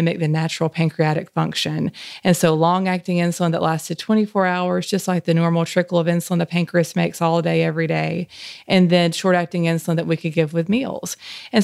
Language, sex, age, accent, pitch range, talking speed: English, female, 30-49, American, 165-180 Hz, 205 wpm